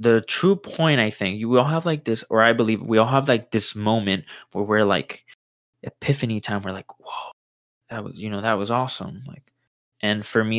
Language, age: English, 20-39